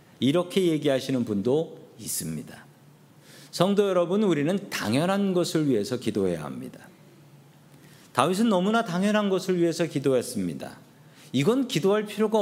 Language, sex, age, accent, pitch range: Korean, male, 40-59, native, 140-195 Hz